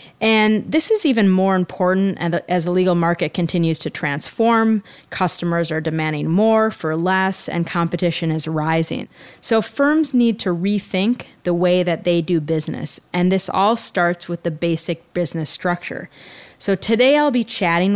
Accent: American